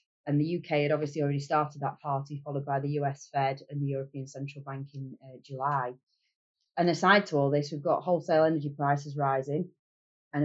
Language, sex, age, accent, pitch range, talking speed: English, female, 30-49, British, 140-175 Hz, 195 wpm